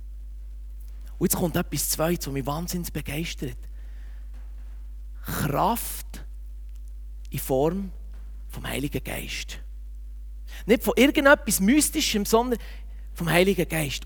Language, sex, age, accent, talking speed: German, male, 30-49, Austrian, 100 wpm